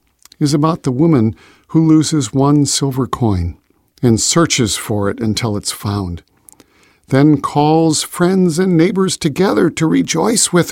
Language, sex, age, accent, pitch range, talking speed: English, male, 50-69, American, 105-155 Hz, 140 wpm